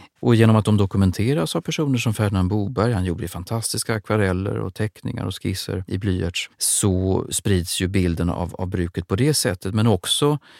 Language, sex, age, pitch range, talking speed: Swedish, male, 30-49, 90-115 Hz, 180 wpm